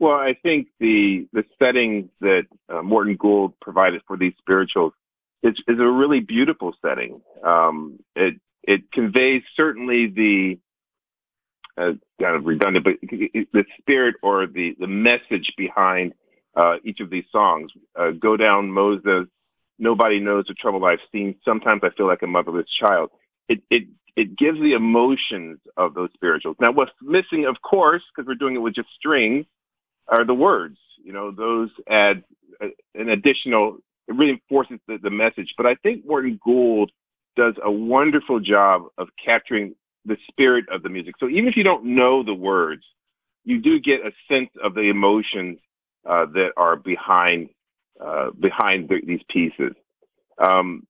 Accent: American